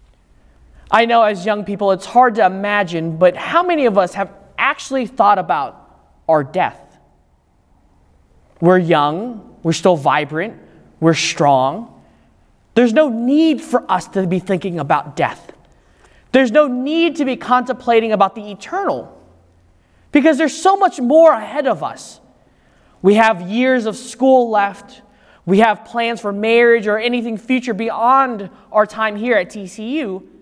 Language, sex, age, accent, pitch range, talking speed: English, male, 20-39, American, 170-240 Hz, 145 wpm